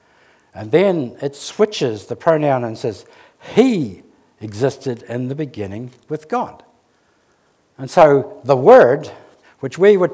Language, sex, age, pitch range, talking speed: English, male, 60-79, 130-180 Hz, 130 wpm